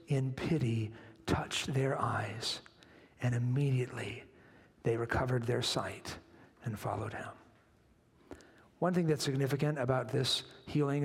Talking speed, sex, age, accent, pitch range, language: 115 wpm, male, 50-69, American, 140-210 Hz, English